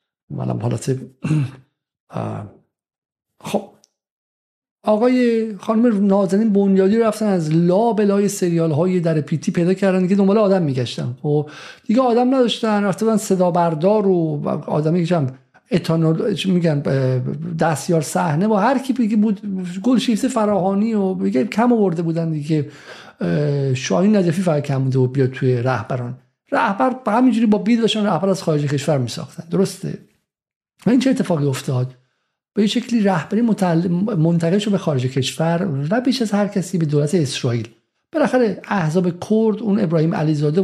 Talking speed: 145 wpm